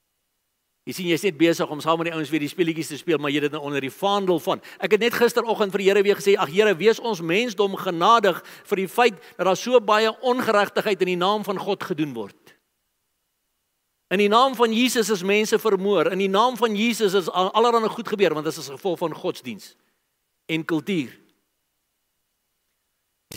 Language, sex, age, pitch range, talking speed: English, male, 60-79, 160-215 Hz, 205 wpm